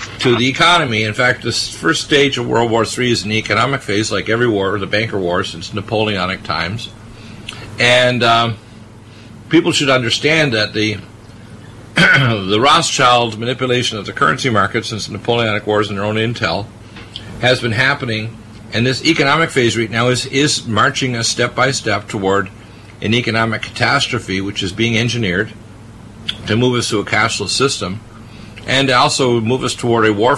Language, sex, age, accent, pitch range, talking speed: English, male, 50-69, American, 105-120 Hz, 170 wpm